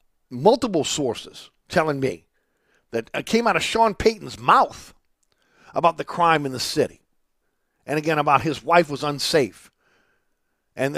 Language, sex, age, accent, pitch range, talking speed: English, male, 50-69, American, 145-195 Hz, 140 wpm